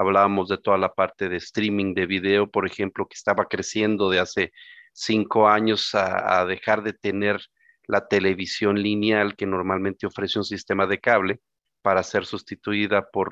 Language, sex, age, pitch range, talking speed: Spanish, male, 40-59, 100-120 Hz, 165 wpm